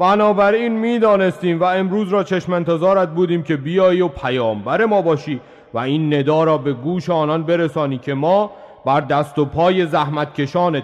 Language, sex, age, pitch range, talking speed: Persian, male, 40-59, 140-190 Hz, 165 wpm